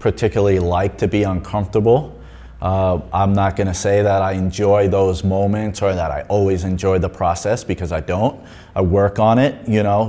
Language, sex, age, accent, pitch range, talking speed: English, male, 30-49, American, 100-110 Hz, 190 wpm